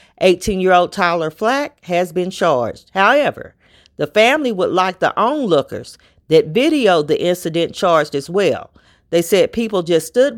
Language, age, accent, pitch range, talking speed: English, 40-59, American, 160-205 Hz, 145 wpm